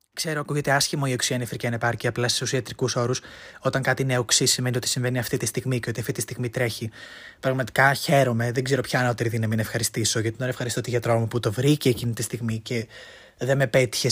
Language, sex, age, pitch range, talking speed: Greek, male, 20-39, 120-145 Hz, 220 wpm